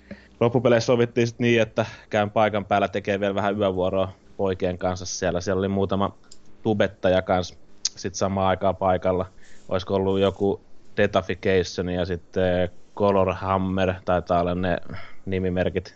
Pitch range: 90-100 Hz